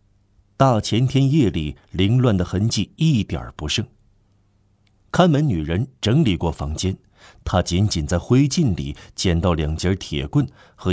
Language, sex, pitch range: Chinese, male, 85-105 Hz